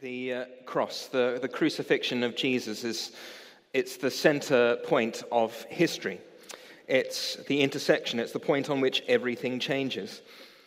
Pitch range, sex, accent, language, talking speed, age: 120-155 Hz, male, British, English, 135 wpm, 30-49